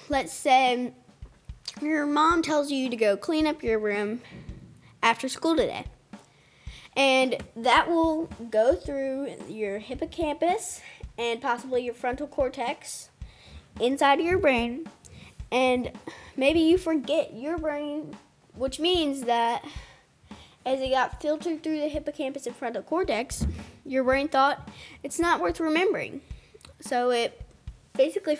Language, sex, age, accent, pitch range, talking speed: English, female, 10-29, American, 230-295 Hz, 125 wpm